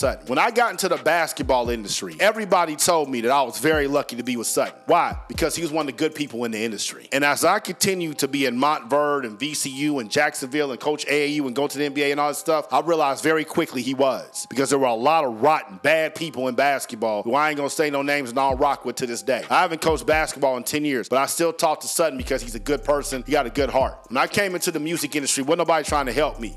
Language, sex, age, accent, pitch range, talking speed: English, male, 40-59, American, 140-170 Hz, 275 wpm